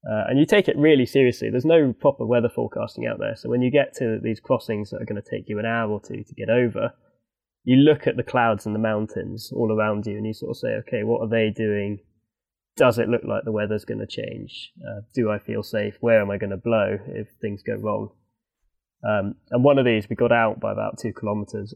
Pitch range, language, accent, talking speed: 105-135 Hz, English, British, 250 wpm